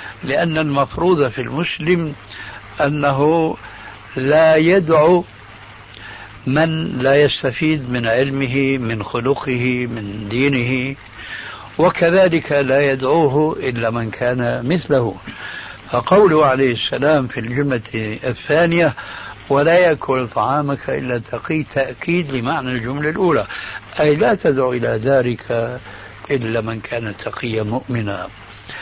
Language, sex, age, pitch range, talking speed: Arabic, male, 60-79, 115-150 Hz, 100 wpm